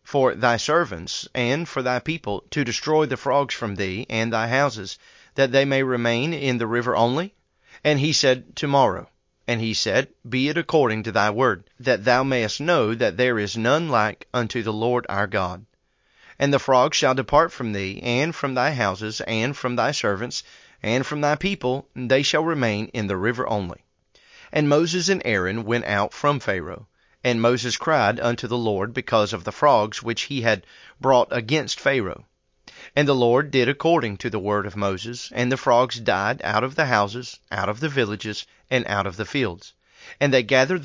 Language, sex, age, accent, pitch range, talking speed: English, male, 30-49, American, 110-140 Hz, 195 wpm